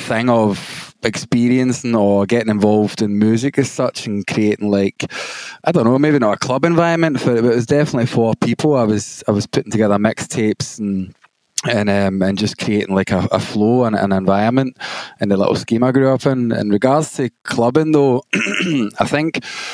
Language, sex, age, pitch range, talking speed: English, male, 20-39, 110-130 Hz, 195 wpm